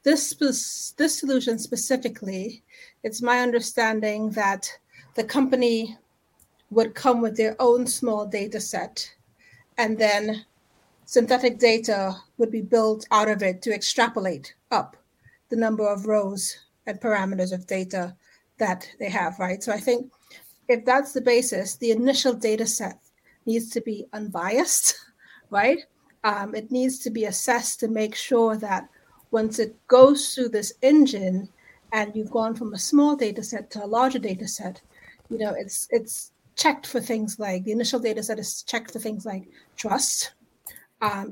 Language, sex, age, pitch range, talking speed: English, female, 40-59, 210-245 Hz, 155 wpm